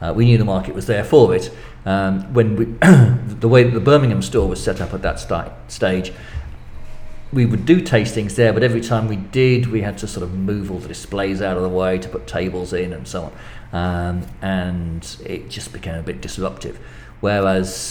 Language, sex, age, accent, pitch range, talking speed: English, male, 40-59, British, 90-115 Hz, 215 wpm